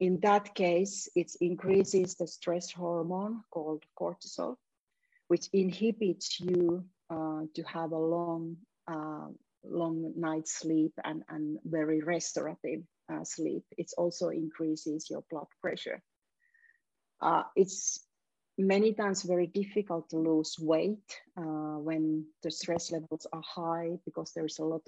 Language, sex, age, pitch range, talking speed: English, female, 40-59, 160-190 Hz, 130 wpm